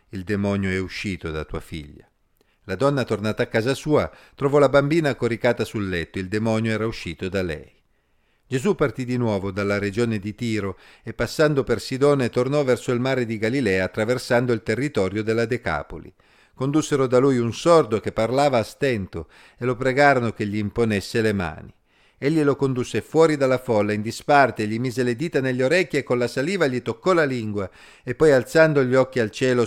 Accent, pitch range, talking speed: native, 105-135 Hz, 190 wpm